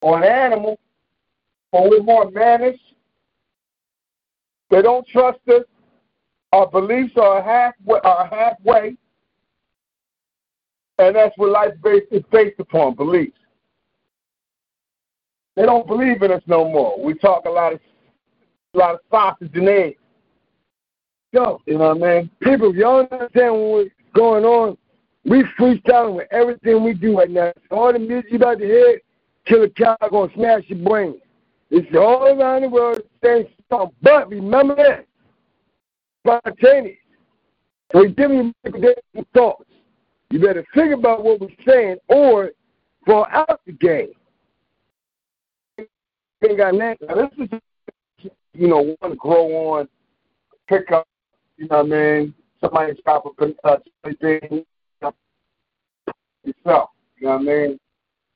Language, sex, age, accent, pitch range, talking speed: English, male, 50-69, American, 180-245 Hz, 135 wpm